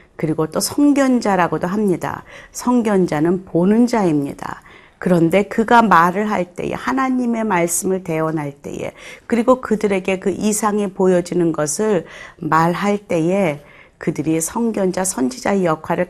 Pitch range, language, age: 160-205 Hz, Korean, 40-59